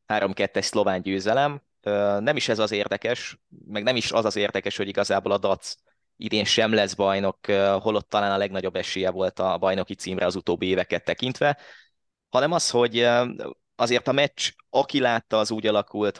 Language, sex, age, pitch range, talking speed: Hungarian, male, 20-39, 100-115 Hz, 165 wpm